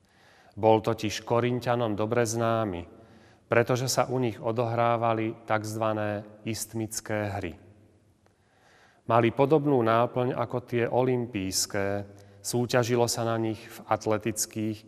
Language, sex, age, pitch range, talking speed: Slovak, male, 40-59, 105-120 Hz, 100 wpm